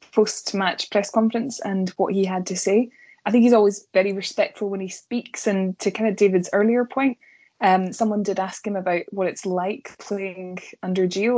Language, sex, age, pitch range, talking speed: English, female, 20-39, 185-220 Hz, 195 wpm